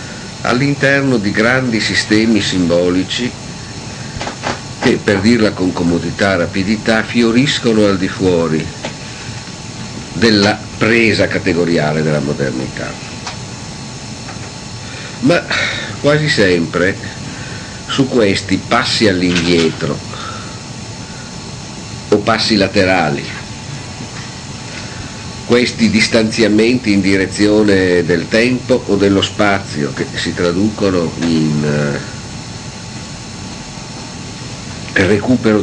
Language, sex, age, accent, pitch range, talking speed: Italian, male, 50-69, native, 90-120 Hz, 75 wpm